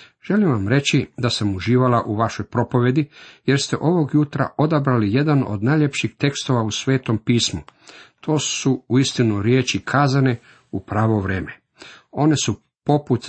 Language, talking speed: Croatian, 145 wpm